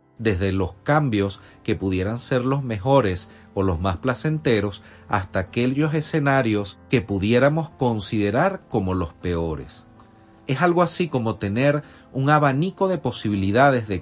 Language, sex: Spanish, male